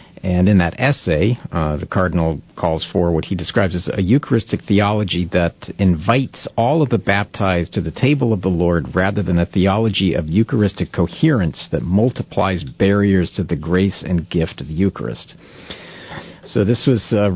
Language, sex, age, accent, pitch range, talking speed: English, male, 50-69, American, 90-115 Hz, 175 wpm